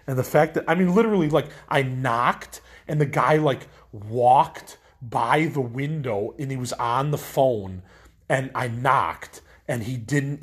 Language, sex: English, male